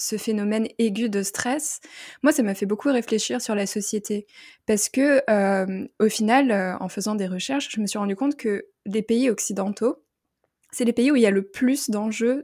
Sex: female